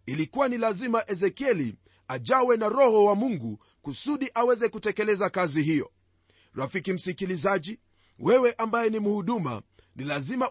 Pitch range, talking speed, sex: 155-240 Hz, 125 wpm, male